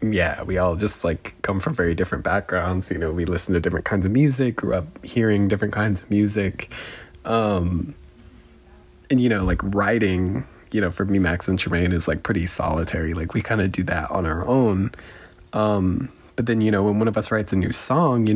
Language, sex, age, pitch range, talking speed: English, male, 20-39, 90-105 Hz, 215 wpm